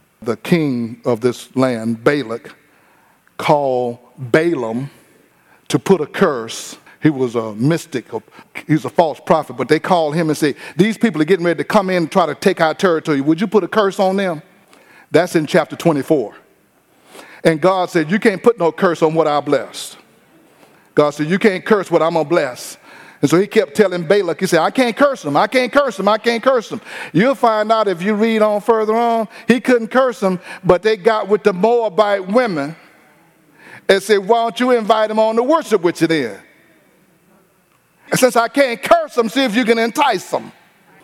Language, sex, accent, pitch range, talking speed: English, male, American, 160-235 Hz, 205 wpm